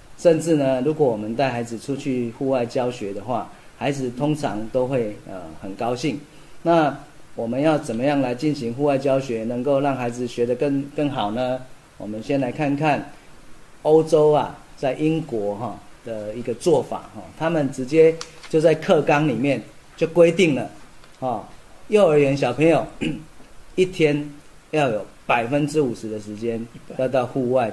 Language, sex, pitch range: Chinese, male, 120-150 Hz